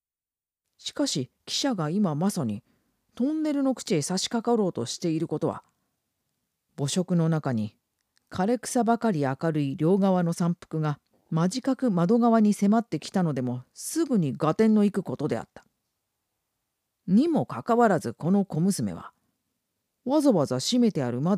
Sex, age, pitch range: female, 40-59, 120-205 Hz